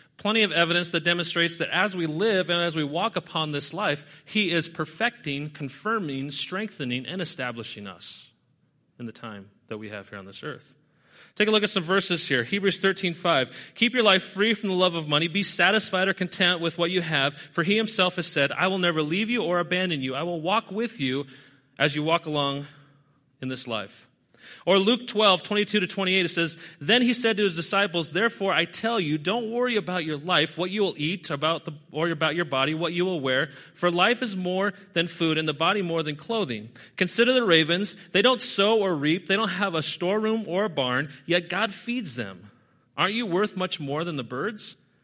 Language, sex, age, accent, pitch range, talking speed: English, male, 30-49, American, 150-200 Hz, 220 wpm